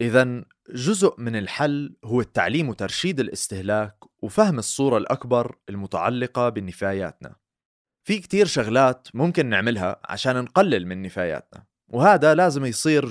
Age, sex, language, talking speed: 30-49, male, Arabic, 115 wpm